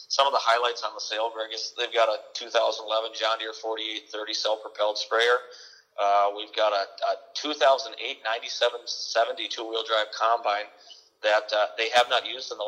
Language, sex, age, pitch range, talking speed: English, male, 30-49, 110-120 Hz, 170 wpm